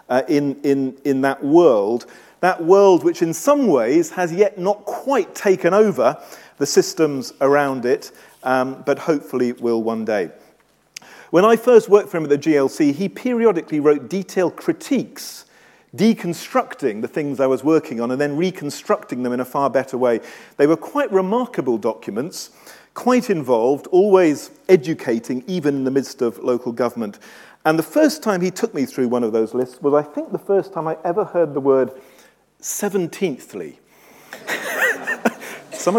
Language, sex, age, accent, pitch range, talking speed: English, male, 40-59, British, 135-210 Hz, 165 wpm